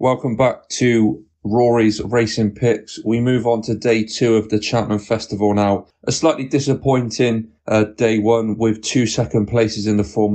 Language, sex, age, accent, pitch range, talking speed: English, male, 30-49, British, 105-125 Hz, 175 wpm